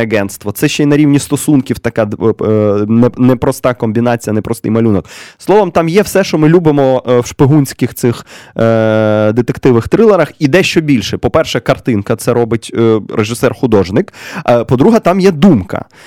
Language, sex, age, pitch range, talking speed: English, male, 20-39, 115-150 Hz, 140 wpm